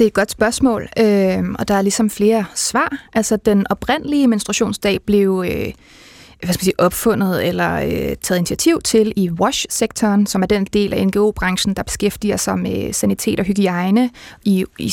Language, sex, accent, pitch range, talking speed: Danish, female, native, 195-235 Hz, 175 wpm